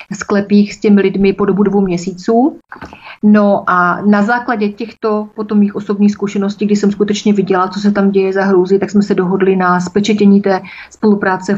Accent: native